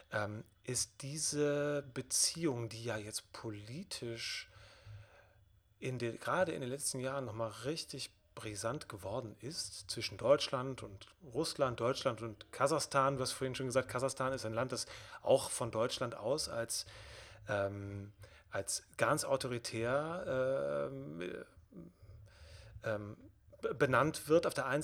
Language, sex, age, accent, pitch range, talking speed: German, male, 30-49, German, 110-135 Hz, 125 wpm